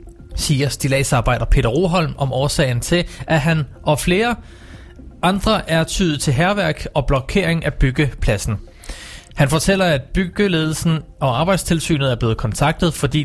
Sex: male